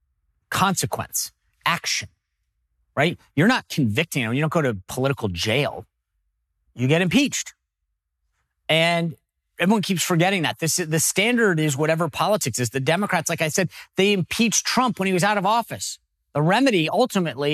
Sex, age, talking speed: male, 40-59, 155 wpm